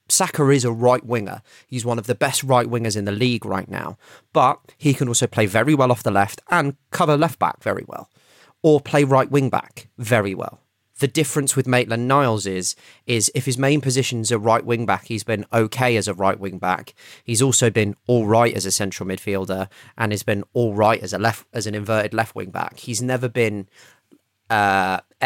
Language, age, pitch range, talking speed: English, 30-49, 105-125 Hz, 215 wpm